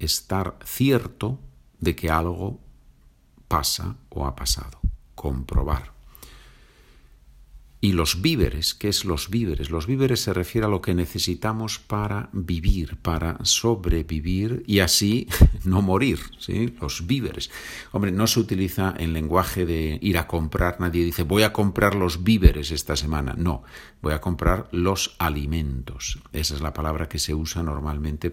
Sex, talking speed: male, 145 wpm